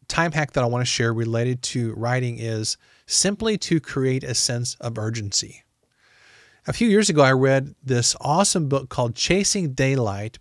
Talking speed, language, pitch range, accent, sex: 175 wpm, English, 120-160 Hz, American, male